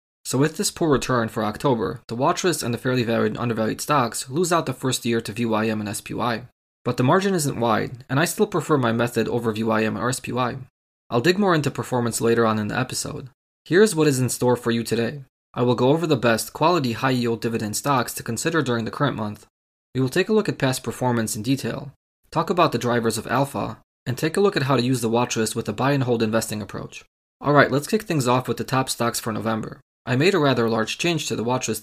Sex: male